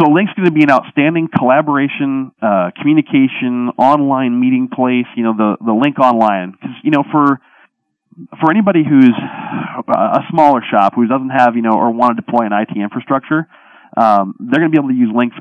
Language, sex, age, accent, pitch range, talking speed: English, male, 30-49, American, 100-135 Hz, 195 wpm